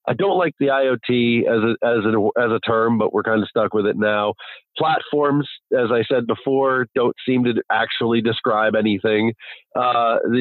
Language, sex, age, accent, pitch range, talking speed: English, male, 40-59, American, 115-135 Hz, 185 wpm